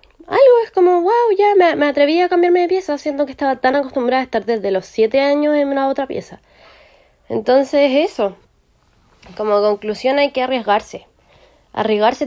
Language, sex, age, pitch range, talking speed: Spanish, female, 20-39, 205-280 Hz, 170 wpm